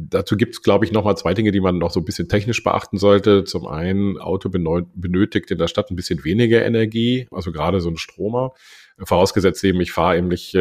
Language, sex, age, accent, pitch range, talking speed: German, male, 40-59, German, 90-105 Hz, 220 wpm